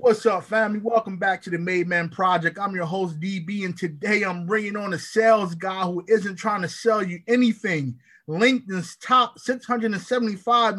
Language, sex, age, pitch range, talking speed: English, male, 20-39, 160-195 Hz, 180 wpm